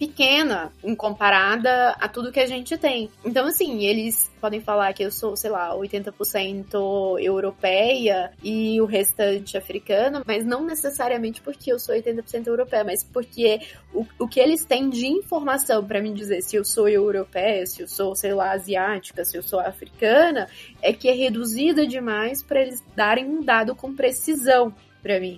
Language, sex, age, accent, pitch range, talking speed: Portuguese, female, 10-29, Brazilian, 205-270 Hz, 170 wpm